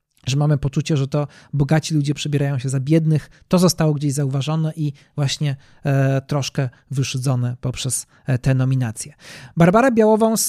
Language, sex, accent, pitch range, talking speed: Polish, male, native, 135-160 Hz, 135 wpm